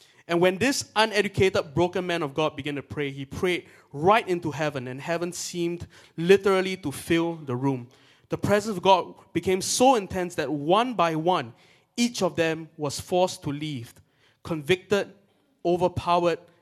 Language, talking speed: English, 160 wpm